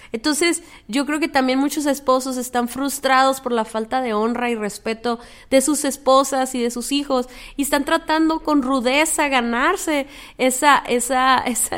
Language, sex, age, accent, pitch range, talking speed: Spanish, female, 30-49, Mexican, 235-275 Hz, 160 wpm